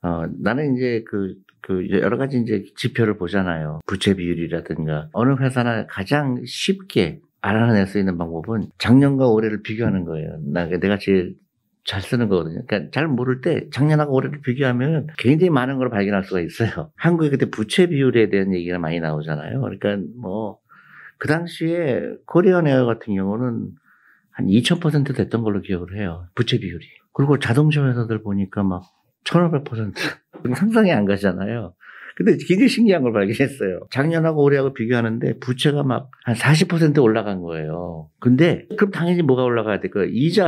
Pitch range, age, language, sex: 100-145 Hz, 50-69, Korean, male